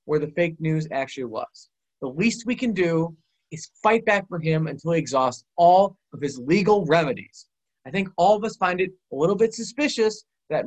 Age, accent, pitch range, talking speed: 30-49, American, 150-200 Hz, 200 wpm